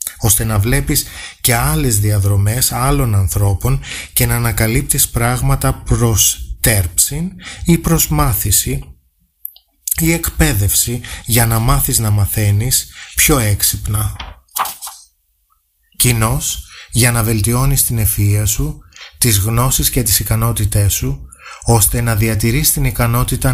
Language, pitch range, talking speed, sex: Greek, 100-125 Hz, 110 wpm, male